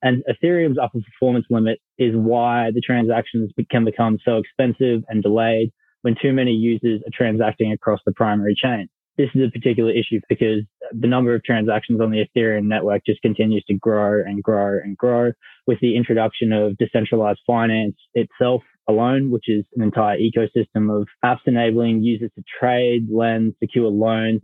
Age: 20-39